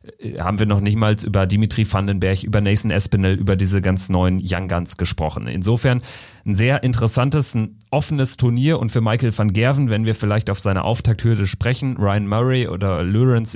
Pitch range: 100-120 Hz